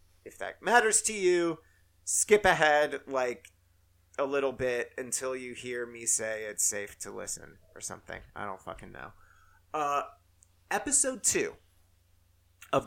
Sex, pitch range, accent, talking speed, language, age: male, 105-160 Hz, American, 140 wpm, English, 30-49